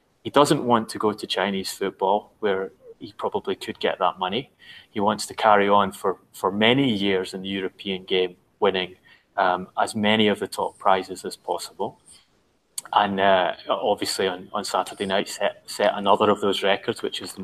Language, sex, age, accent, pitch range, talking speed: English, male, 20-39, British, 95-115 Hz, 185 wpm